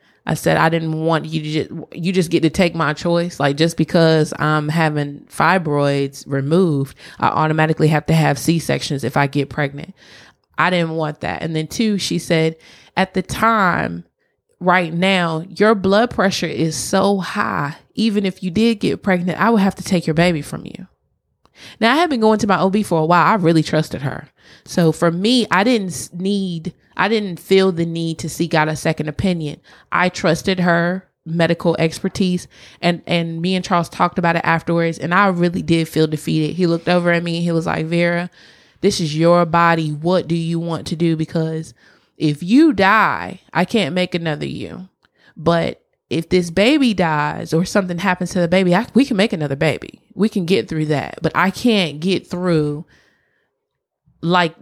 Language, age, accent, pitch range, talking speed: English, 20-39, American, 155-185 Hz, 190 wpm